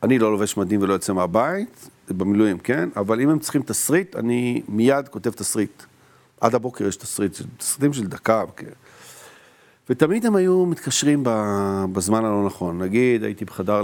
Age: 50-69